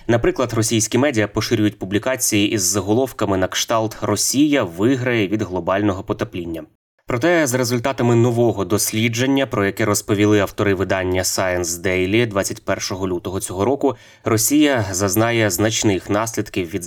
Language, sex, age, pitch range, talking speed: Ukrainian, male, 20-39, 95-115 Hz, 125 wpm